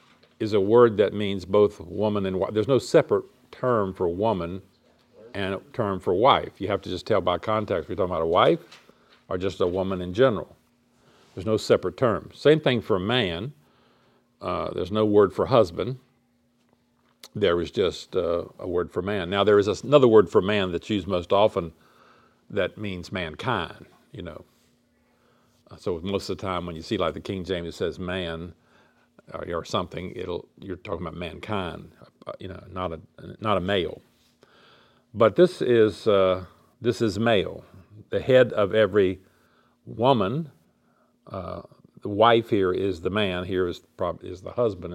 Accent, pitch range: American, 90-115 Hz